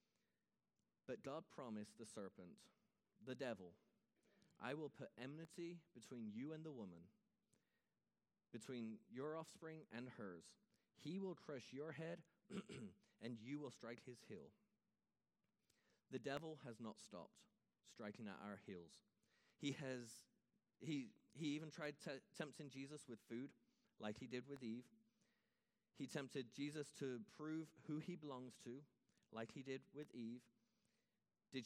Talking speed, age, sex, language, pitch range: 135 wpm, 30-49, male, English, 115-165 Hz